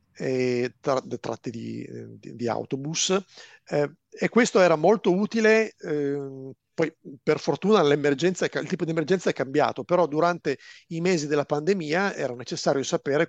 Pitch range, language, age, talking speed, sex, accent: 135-175 Hz, Italian, 40-59, 150 wpm, male, native